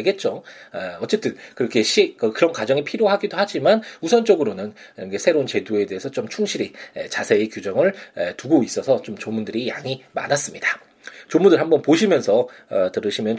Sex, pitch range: male, 110-170 Hz